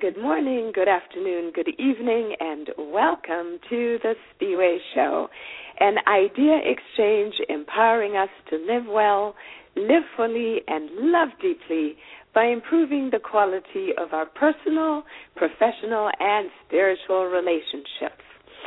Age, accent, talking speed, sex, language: 50-69, American, 115 wpm, female, English